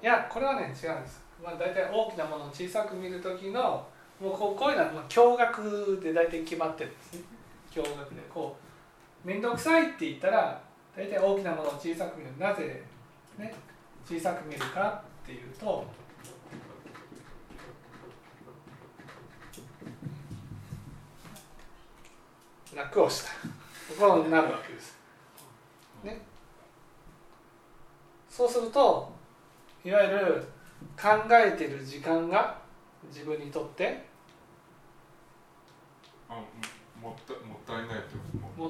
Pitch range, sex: 155-210 Hz, male